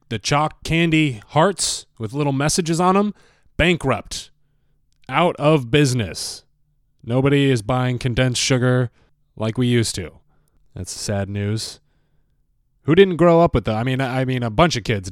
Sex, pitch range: male, 100-140 Hz